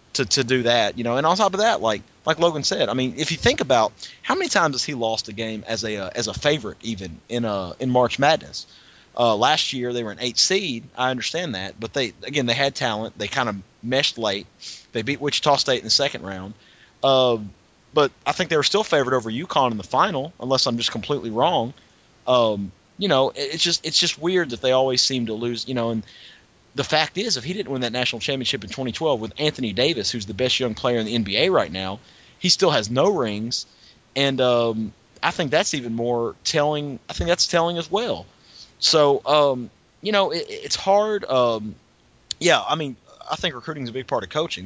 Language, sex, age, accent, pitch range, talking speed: English, male, 30-49, American, 115-145 Hz, 230 wpm